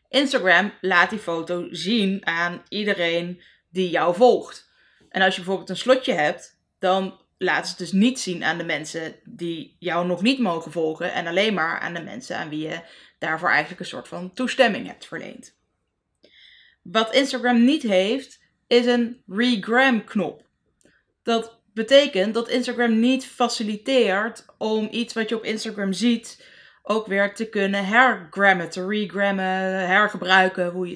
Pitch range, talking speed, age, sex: 180-240 Hz, 155 wpm, 20-39, female